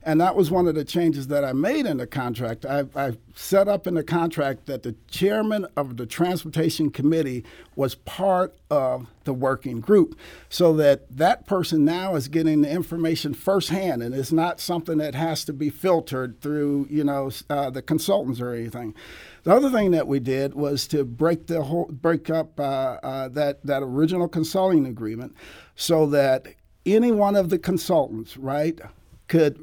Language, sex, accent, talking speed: English, male, American, 180 wpm